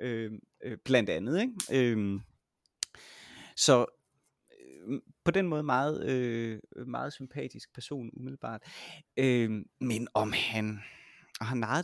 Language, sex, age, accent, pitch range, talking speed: Danish, male, 30-49, native, 105-130 Hz, 110 wpm